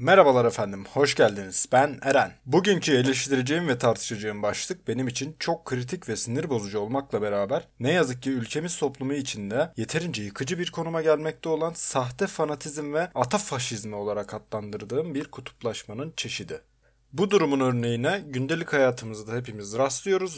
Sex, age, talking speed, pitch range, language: male, 30-49, 145 wpm, 120-165 Hz, Turkish